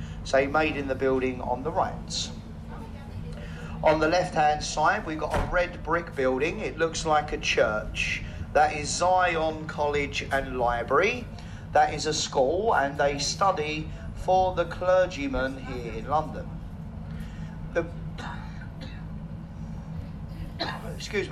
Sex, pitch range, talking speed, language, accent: male, 110-160 Hz, 120 wpm, English, British